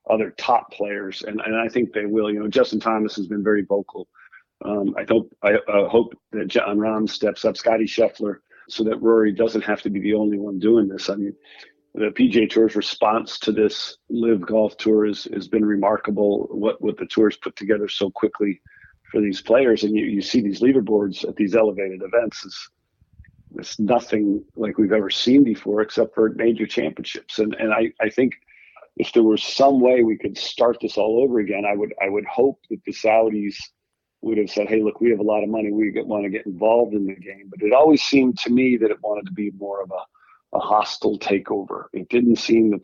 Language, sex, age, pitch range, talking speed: English, male, 50-69, 100-110 Hz, 215 wpm